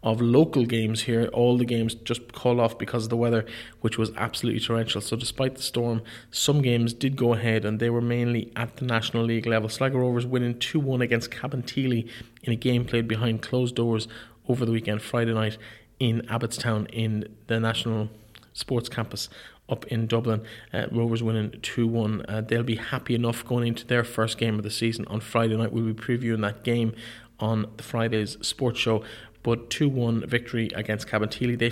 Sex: male